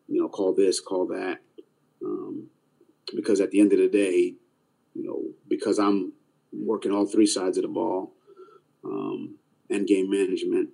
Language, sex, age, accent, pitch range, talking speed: English, male, 30-49, American, 335-370 Hz, 160 wpm